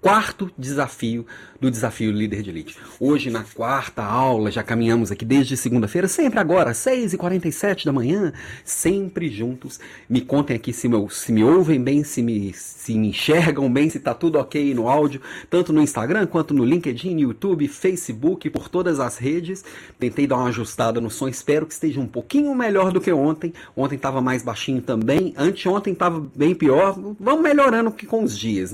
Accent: Brazilian